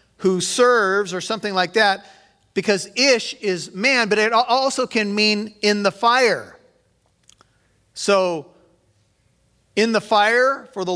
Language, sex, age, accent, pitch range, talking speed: English, male, 30-49, American, 165-210 Hz, 130 wpm